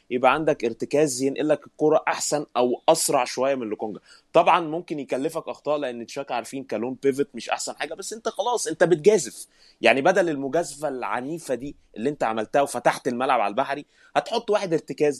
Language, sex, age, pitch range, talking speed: Arabic, male, 20-39, 115-155 Hz, 175 wpm